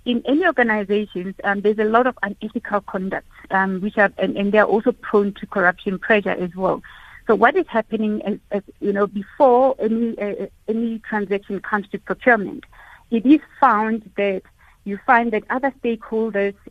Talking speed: 175 wpm